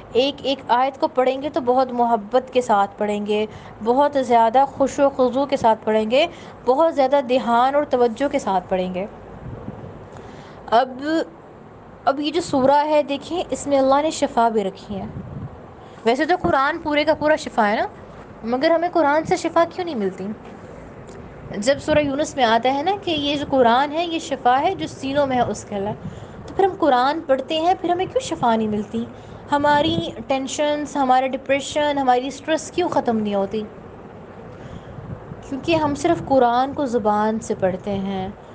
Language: Urdu